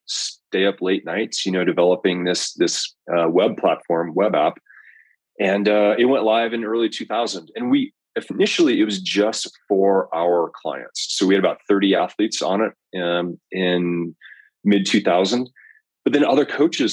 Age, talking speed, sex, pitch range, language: 30-49, 165 wpm, male, 90-110 Hz, English